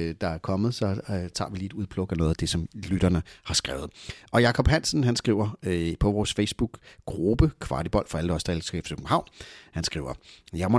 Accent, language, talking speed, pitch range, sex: native, Danish, 215 wpm, 85-110 Hz, male